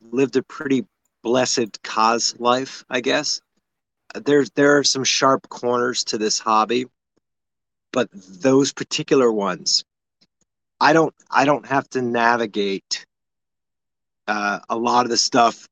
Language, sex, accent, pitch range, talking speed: English, male, American, 115-140 Hz, 130 wpm